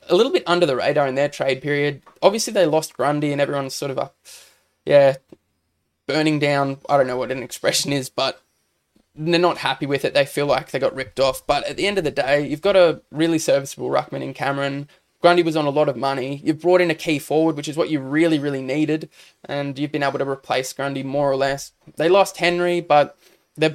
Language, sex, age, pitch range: English, male, 20-39, 140-165 Hz